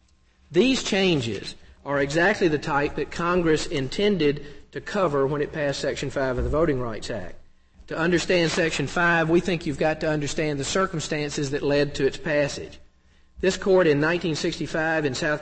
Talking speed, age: 170 wpm, 50-69